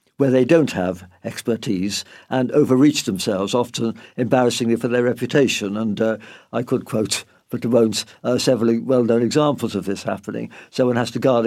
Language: English